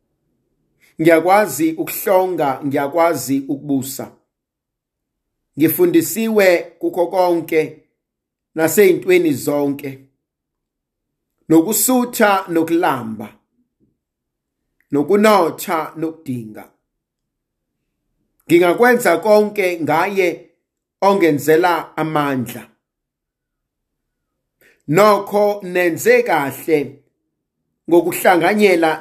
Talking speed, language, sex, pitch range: 50 wpm, English, male, 160-210 Hz